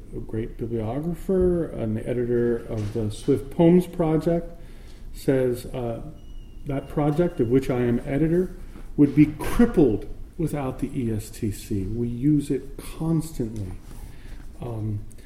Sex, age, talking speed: male, 40-59, 120 wpm